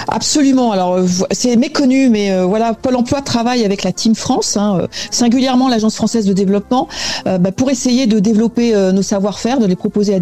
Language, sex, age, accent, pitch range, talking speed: French, female, 40-59, French, 180-225 Hz, 195 wpm